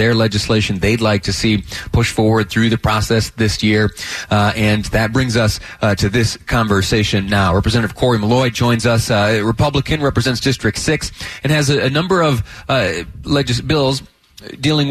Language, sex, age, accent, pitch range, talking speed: English, male, 30-49, American, 95-120 Hz, 175 wpm